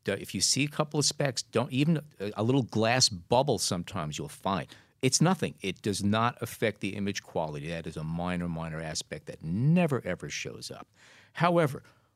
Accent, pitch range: American, 95-130 Hz